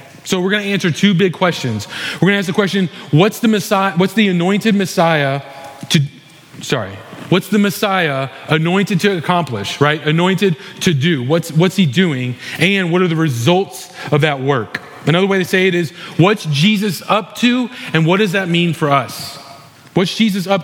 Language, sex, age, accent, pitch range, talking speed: English, male, 30-49, American, 155-195 Hz, 190 wpm